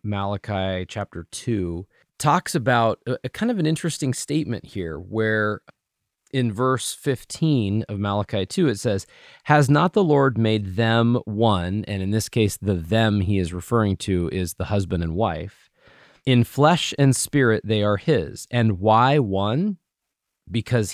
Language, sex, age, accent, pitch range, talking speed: English, male, 30-49, American, 100-135 Hz, 160 wpm